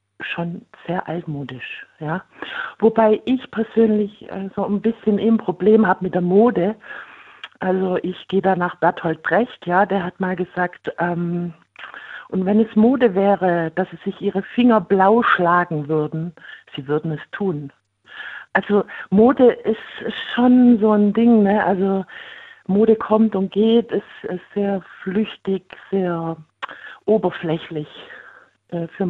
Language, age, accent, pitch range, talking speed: German, 60-79, German, 170-210 Hz, 140 wpm